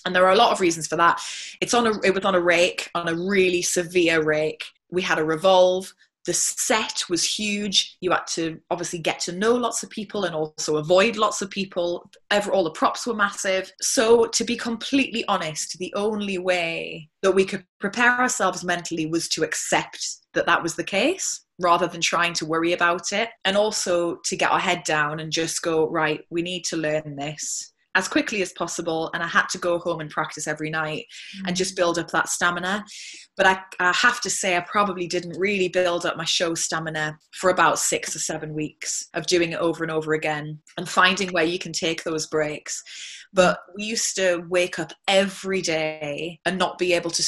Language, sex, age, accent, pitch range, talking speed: English, female, 20-39, British, 160-195 Hz, 205 wpm